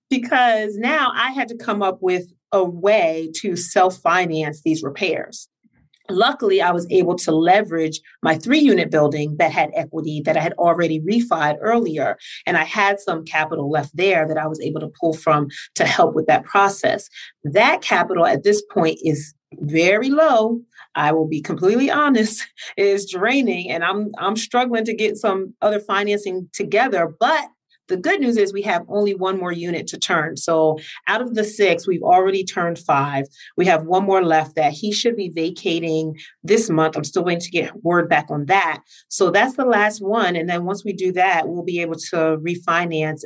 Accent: American